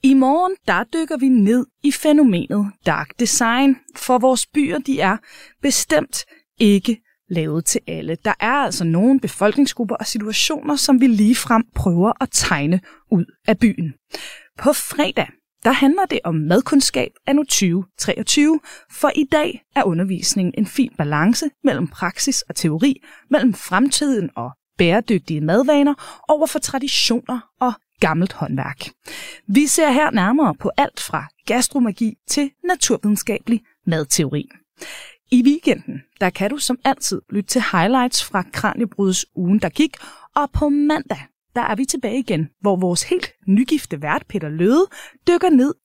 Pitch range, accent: 195-285 Hz, native